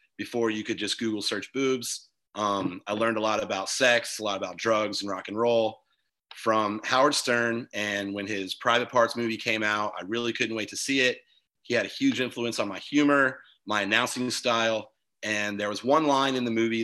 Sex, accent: male, American